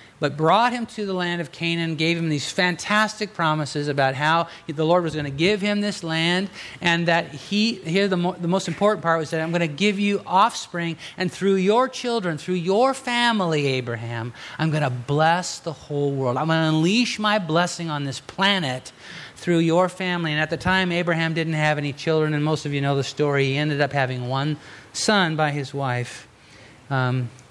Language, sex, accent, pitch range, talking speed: English, male, American, 135-175 Hz, 205 wpm